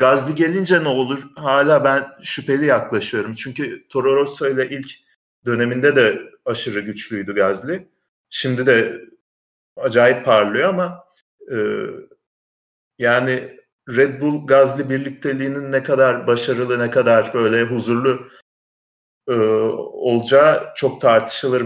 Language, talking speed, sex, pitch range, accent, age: Turkish, 110 wpm, male, 125-160 Hz, native, 40-59